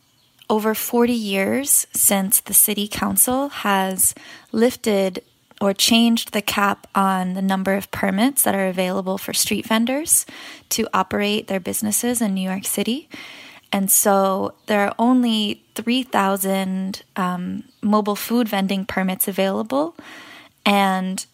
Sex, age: female, 20-39